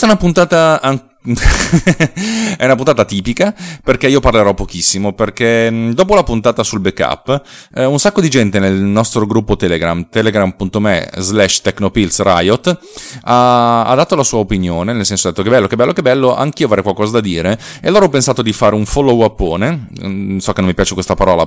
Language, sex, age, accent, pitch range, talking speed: Italian, male, 30-49, native, 95-130 Hz, 185 wpm